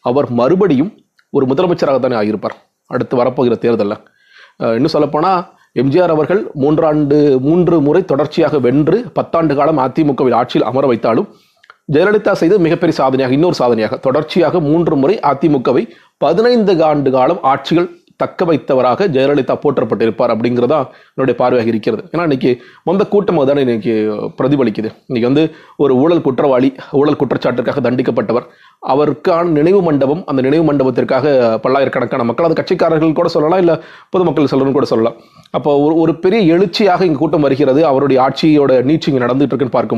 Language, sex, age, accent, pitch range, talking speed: Tamil, male, 30-49, native, 130-165 Hz, 130 wpm